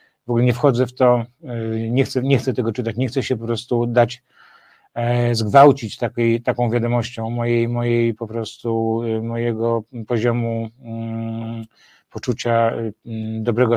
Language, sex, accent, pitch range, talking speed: Polish, male, native, 115-125 Hz, 130 wpm